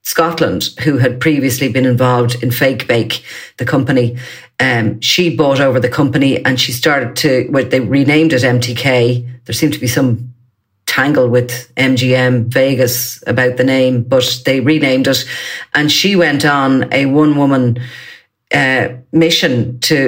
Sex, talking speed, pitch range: female, 150 wpm, 125-145 Hz